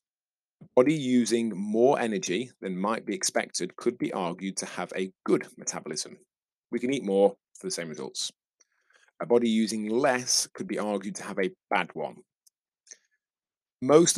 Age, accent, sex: 30-49, British, male